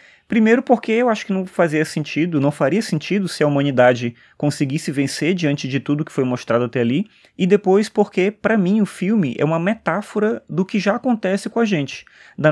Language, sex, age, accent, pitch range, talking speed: Portuguese, male, 20-39, Brazilian, 130-180 Hz, 200 wpm